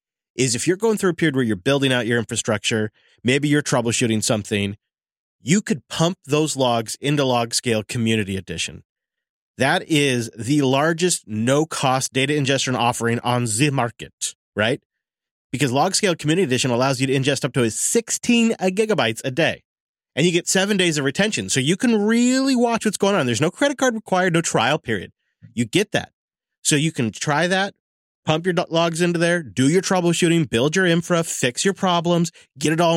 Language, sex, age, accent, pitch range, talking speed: English, male, 30-49, American, 120-170 Hz, 180 wpm